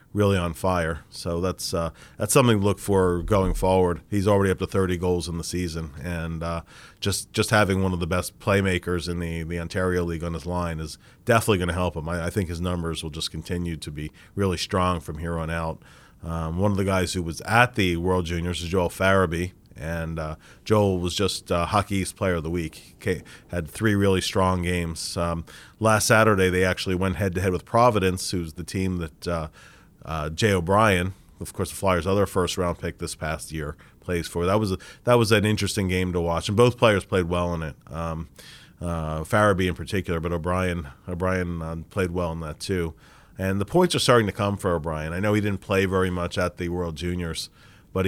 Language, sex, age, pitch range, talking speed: English, male, 30-49, 85-100 Hz, 220 wpm